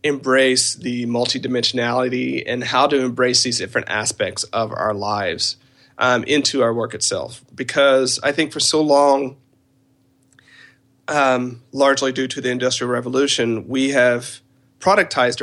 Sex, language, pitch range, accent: male, English, 125-140 Hz, American